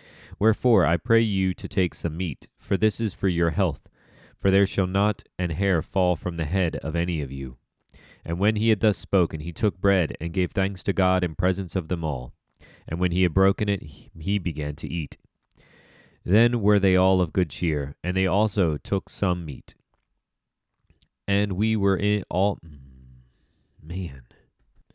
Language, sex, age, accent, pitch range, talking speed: English, male, 30-49, American, 85-100 Hz, 185 wpm